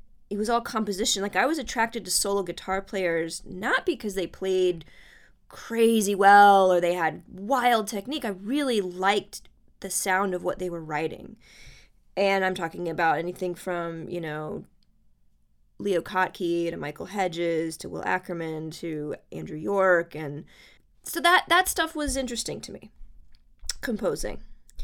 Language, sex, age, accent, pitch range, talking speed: English, female, 20-39, American, 170-220 Hz, 150 wpm